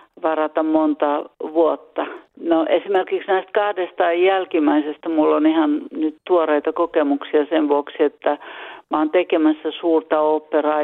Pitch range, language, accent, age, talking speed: 150-205 Hz, Finnish, native, 50-69, 110 wpm